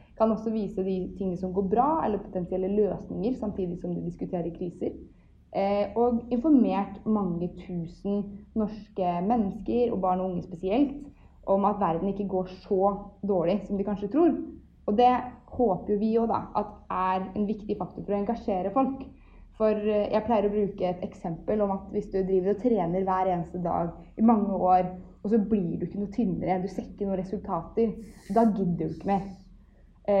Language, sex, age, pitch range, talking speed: English, female, 20-39, 185-220 Hz, 170 wpm